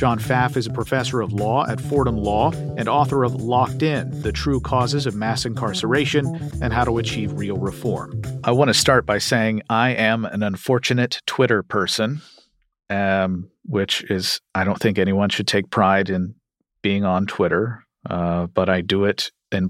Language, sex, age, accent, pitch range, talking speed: English, male, 40-59, American, 95-125 Hz, 180 wpm